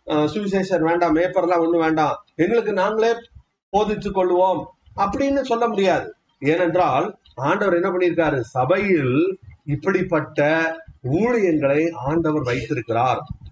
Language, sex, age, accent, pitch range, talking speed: Tamil, male, 30-49, native, 155-225 Hz, 55 wpm